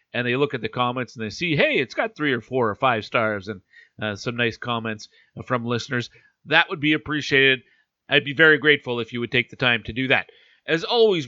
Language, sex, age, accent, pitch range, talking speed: English, male, 40-59, American, 120-155 Hz, 235 wpm